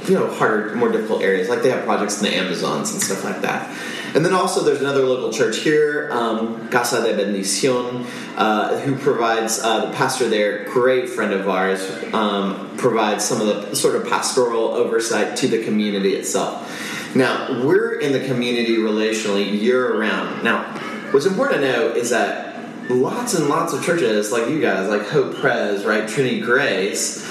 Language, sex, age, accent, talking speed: English, male, 30-49, American, 180 wpm